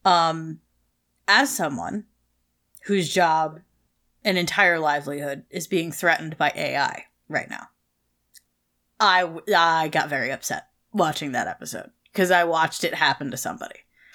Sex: female